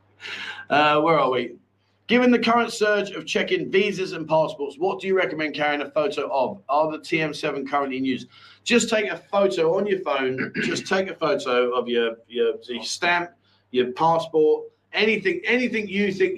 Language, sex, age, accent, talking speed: English, male, 30-49, British, 180 wpm